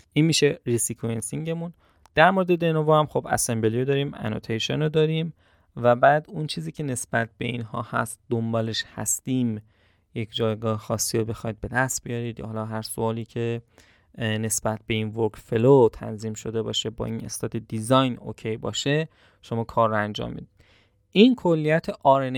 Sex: male